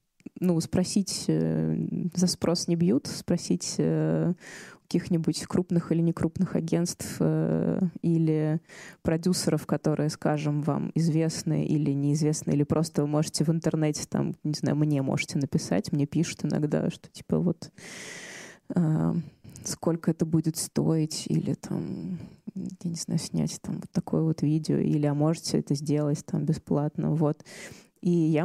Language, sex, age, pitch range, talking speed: Russian, female, 20-39, 155-185 Hz, 145 wpm